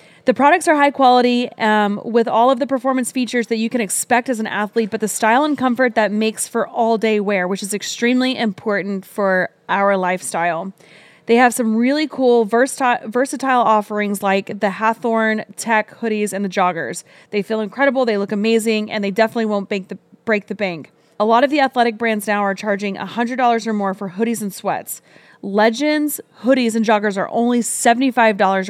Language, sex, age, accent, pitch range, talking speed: English, female, 20-39, American, 200-240 Hz, 185 wpm